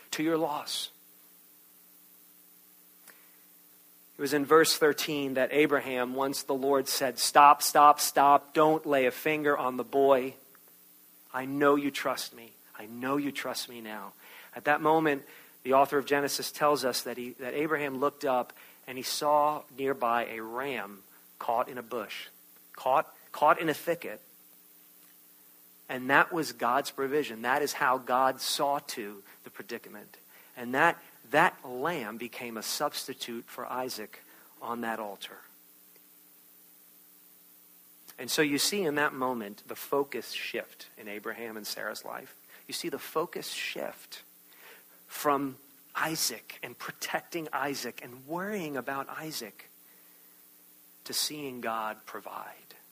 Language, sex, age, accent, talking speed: English, male, 40-59, American, 140 wpm